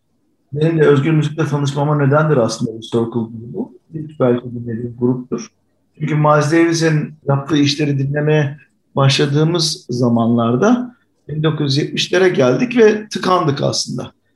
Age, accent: 50-69, Turkish